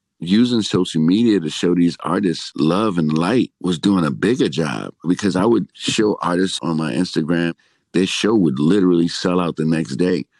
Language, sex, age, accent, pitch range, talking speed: English, male, 50-69, American, 80-90 Hz, 185 wpm